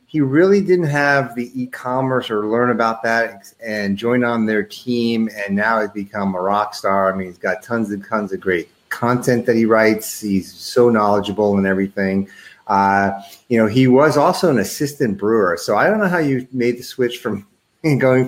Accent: American